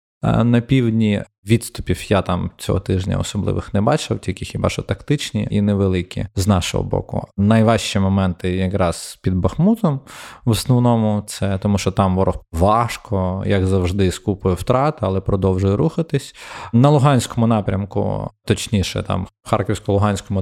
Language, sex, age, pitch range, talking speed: Ukrainian, male, 20-39, 95-120 Hz, 130 wpm